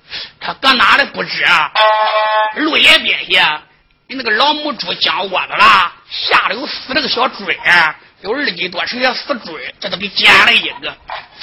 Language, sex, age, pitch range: Chinese, male, 50-69, 215-290 Hz